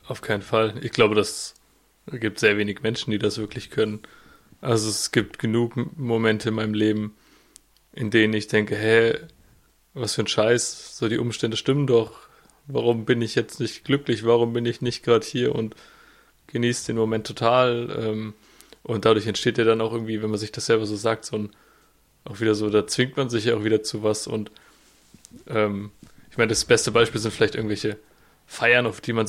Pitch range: 110-120 Hz